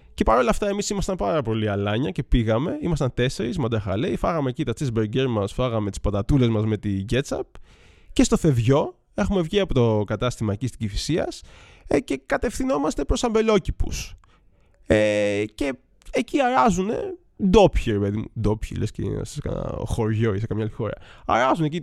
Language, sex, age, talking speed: Greek, male, 20-39, 170 wpm